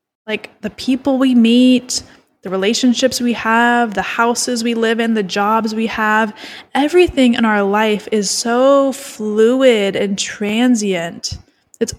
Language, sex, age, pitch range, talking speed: English, female, 10-29, 215-255 Hz, 140 wpm